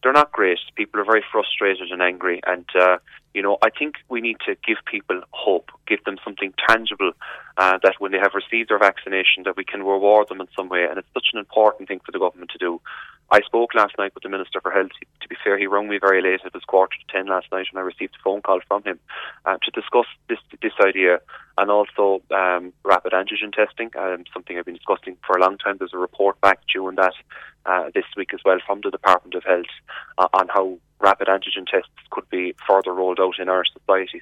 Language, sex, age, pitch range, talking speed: English, male, 20-39, 95-105 Hz, 235 wpm